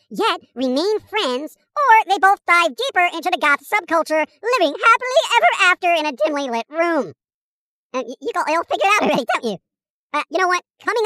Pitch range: 275-360 Hz